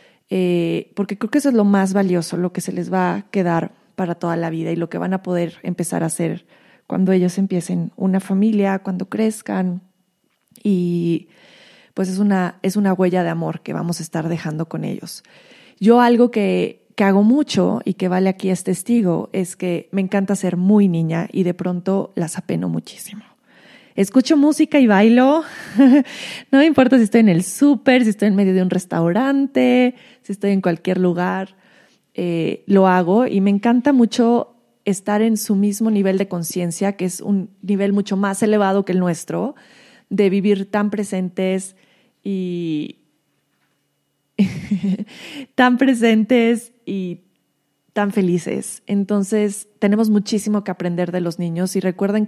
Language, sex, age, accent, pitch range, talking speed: Spanish, female, 20-39, Mexican, 180-215 Hz, 165 wpm